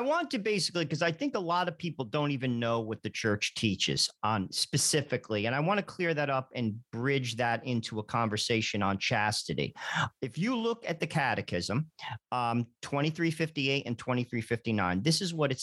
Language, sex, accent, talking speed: English, male, American, 190 wpm